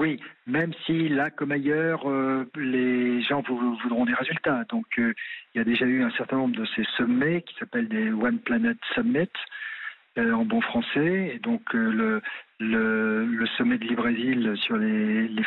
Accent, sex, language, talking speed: French, male, French, 190 wpm